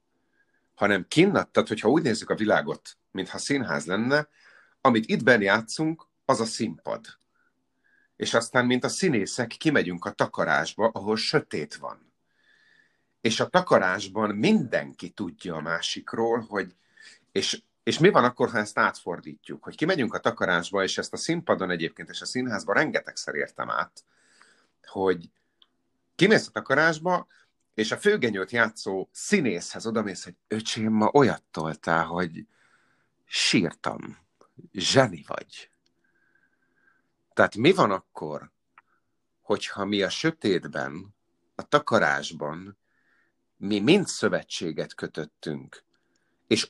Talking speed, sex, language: 120 wpm, male, Hungarian